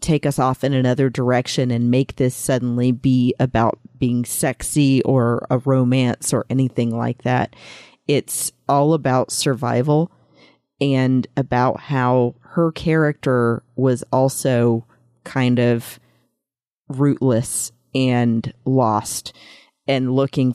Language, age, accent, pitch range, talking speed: English, 40-59, American, 120-140 Hz, 115 wpm